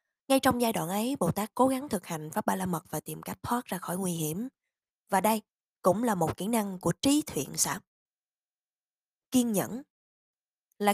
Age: 20-39